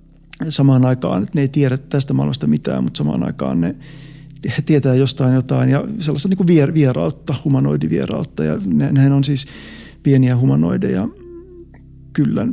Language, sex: Finnish, male